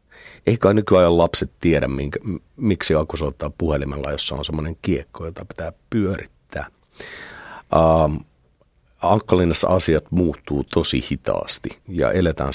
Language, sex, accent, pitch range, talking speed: Finnish, male, native, 70-90 Hz, 125 wpm